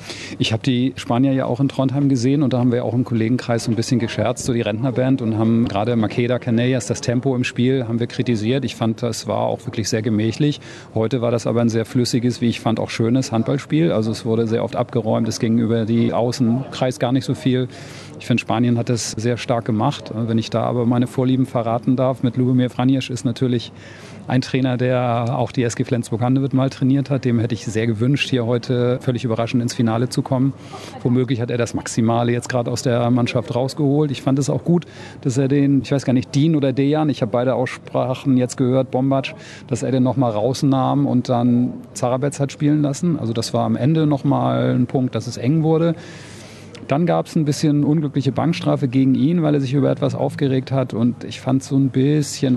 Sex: male